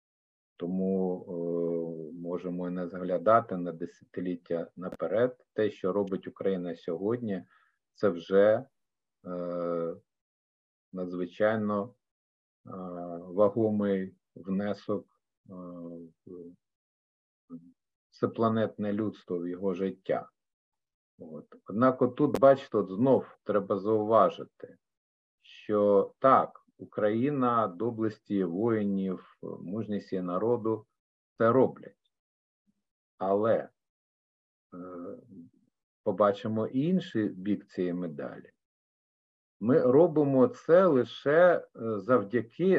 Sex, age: male, 50-69